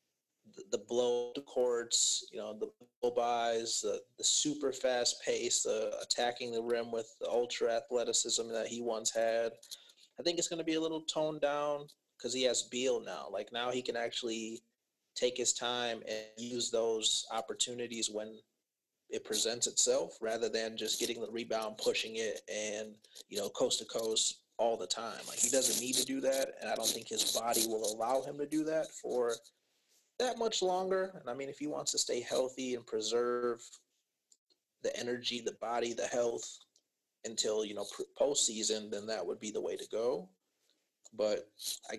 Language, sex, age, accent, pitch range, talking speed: English, male, 30-49, American, 115-175 Hz, 185 wpm